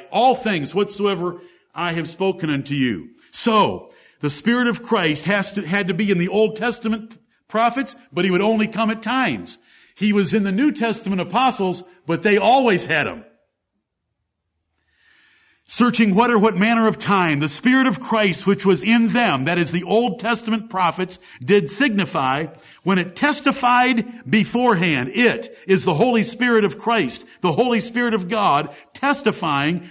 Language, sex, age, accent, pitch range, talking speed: English, male, 50-69, American, 185-240 Hz, 165 wpm